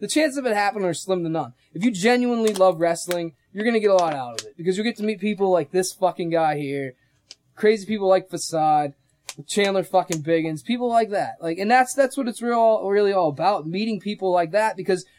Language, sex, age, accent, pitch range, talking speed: English, male, 20-39, American, 150-225 Hz, 230 wpm